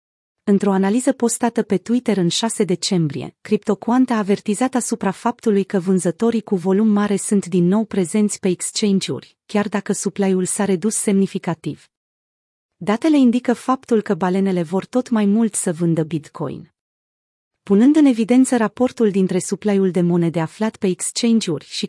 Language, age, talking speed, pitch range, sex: Romanian, 30-49, 150 wpm, 185-225 Hz, female